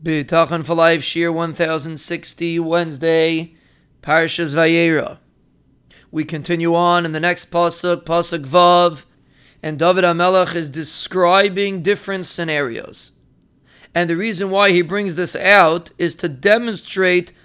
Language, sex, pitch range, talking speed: English, male, 165-200 Hz, 120 wpm